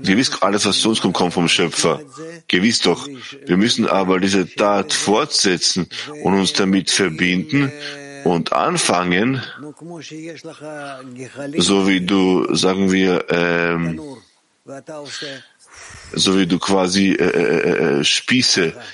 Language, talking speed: English, 115 wpm